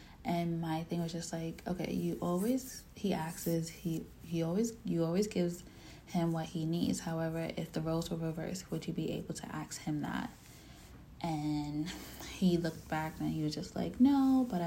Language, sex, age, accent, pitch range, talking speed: English, female, 20-39, American, 160-185 Hz, 190 wpm